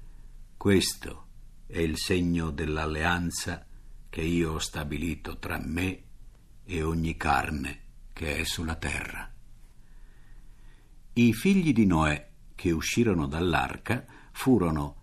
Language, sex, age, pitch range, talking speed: Italian, male, 60-79, 85-130 Hz, 105 wpm